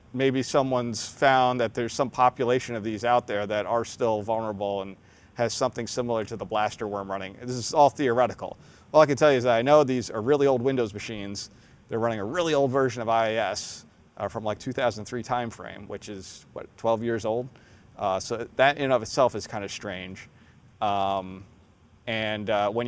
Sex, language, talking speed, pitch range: male, English, 200 wpm, 105-125 Hz